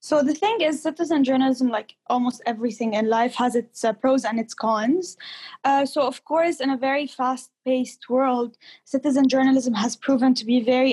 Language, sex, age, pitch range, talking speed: English, female, 10-29, 245-290 Hz, 185 wpm